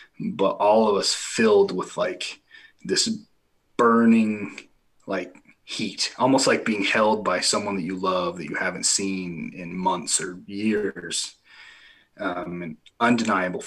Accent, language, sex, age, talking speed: American, English, male, 30-49, 130 wpm